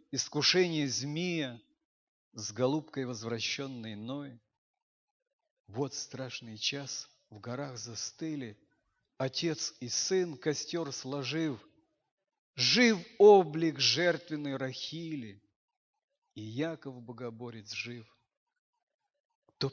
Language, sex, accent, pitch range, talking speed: Russian, male, native, 115-160 Hz, 80 wpm